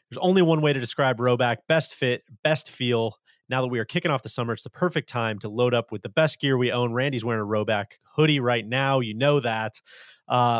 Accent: American